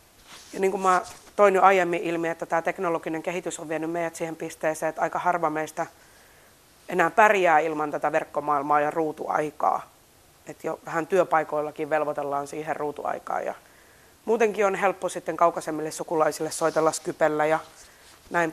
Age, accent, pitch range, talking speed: 30-49, native, 155-175 Hz, 150 wpm